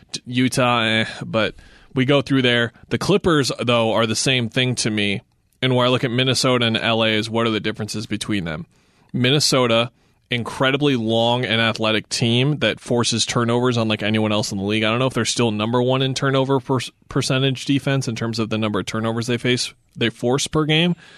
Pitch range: 110-130 Hz